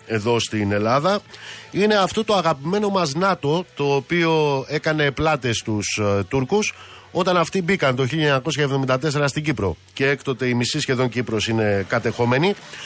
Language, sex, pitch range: Greek, male, 115-155 Hz